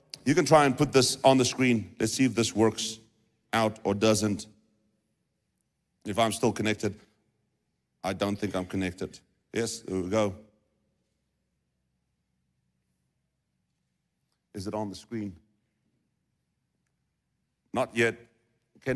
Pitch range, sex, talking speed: 110-155 Hz, male, 120 wpm